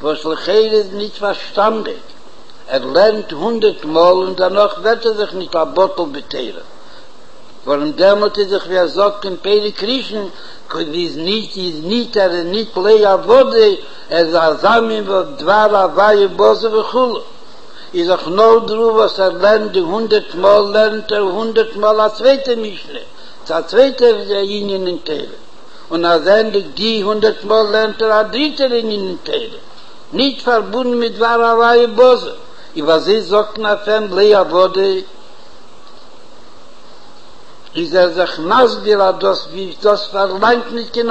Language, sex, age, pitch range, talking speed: Hebrew, male, 60-79, 190-235 Hz, 105 wpm